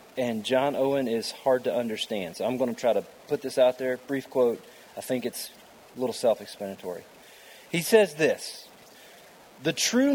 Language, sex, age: English, male, 30-49